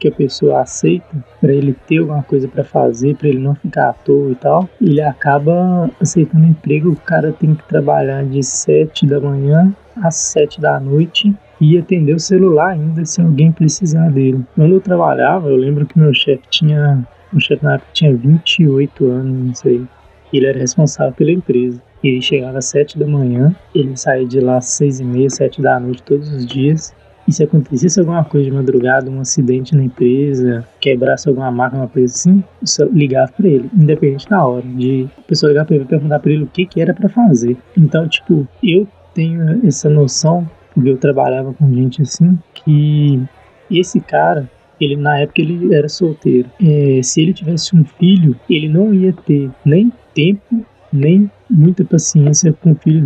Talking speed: 185 wpm